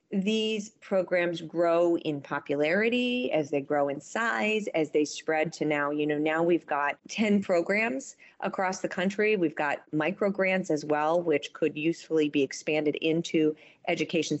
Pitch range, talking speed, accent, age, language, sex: 150-195 Hz, 160 wpm, American, 40-59, English, female